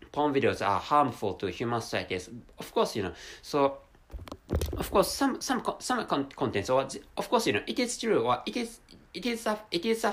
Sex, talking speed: male, 220 wpm